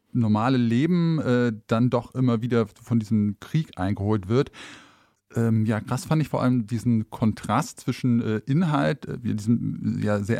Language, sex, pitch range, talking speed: German, male, 110-130 Hz, 155 wpm